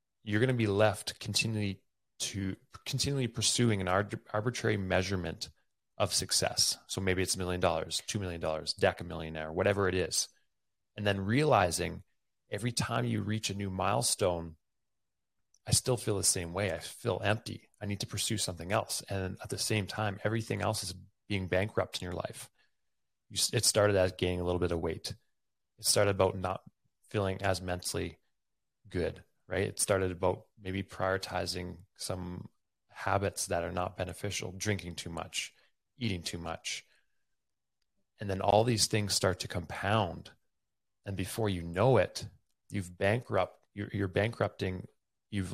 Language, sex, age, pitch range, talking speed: English, male, 30-49, 90-110 Hz, 160 wpm